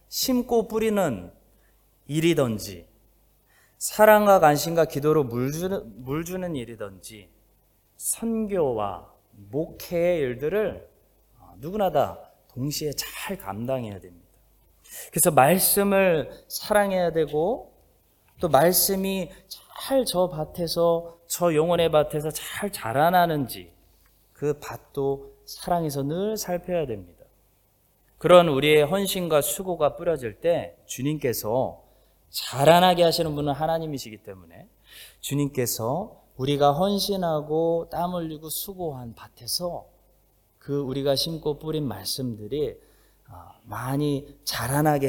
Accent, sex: native, male